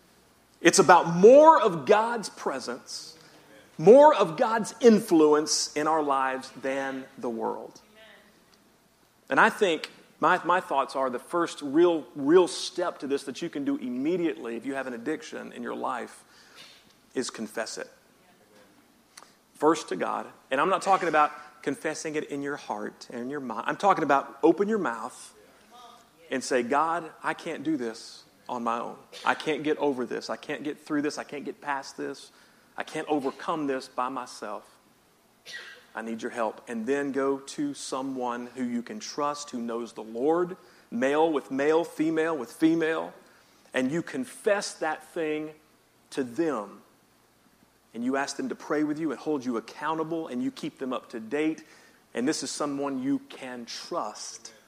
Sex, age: male, 40-59